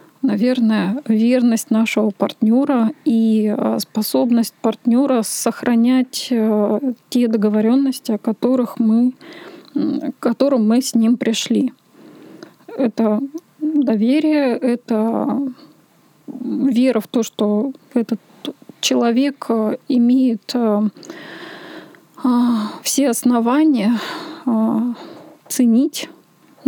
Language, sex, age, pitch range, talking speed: Russian, female, 20-39, 230-270 Hz, 70 wpm